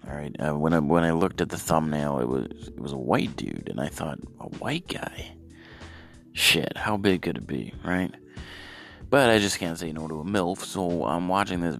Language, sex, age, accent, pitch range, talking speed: English, male, 30-49, American, 75-90 Hz, 220 wpm